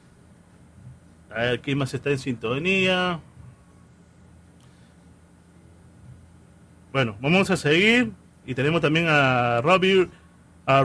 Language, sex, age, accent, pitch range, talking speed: Spanish, male, 40-59, Argentinian, 125-180 Hz, 90 wpm